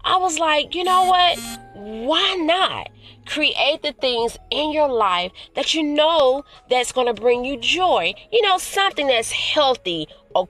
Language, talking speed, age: English, 160 wpm, 30-49